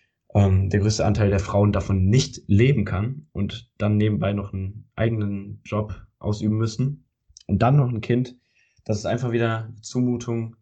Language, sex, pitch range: German, male, 95-115 Hz